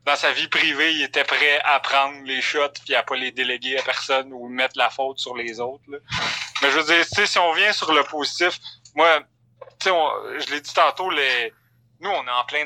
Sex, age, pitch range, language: male, 30-49, 125-150 Hz, French